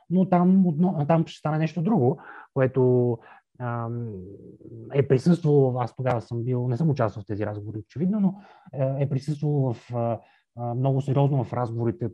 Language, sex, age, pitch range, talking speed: Bulgarian, male, 20-39, 115-150 Hz, 135 wpm